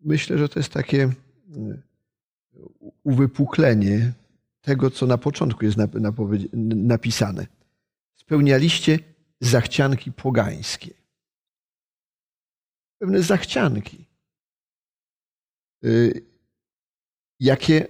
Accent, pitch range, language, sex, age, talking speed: native, 115-155 Hz, Polish, male, 50-69, 60 wpm